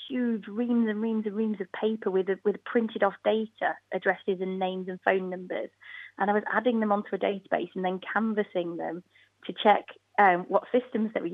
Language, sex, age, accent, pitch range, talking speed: English, female, 30-49, British, 185-220 Hz, 200 wpm